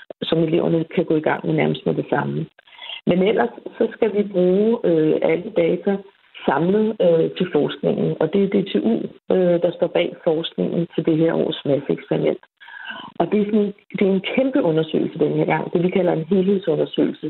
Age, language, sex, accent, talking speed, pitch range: 60-79, Danish, female, native, 195 wpm, 165-215 Hz